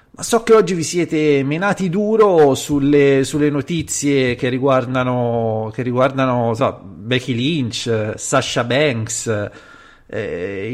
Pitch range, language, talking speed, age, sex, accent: 120-155 Hz, Italian, 115 wpm, 30-49, male, native